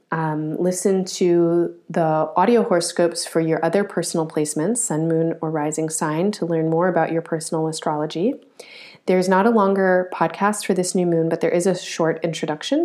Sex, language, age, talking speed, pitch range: female, English, 30-49, 175 wpm, 160-190 Hz